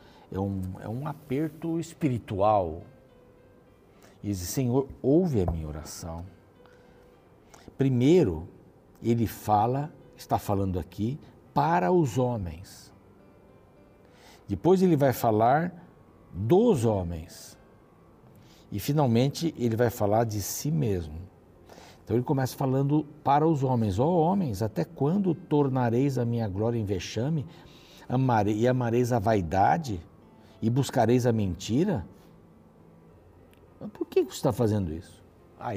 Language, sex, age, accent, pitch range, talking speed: Portuguese, male, 60-79, Brazilian, 95-145 Hz, 115 wpm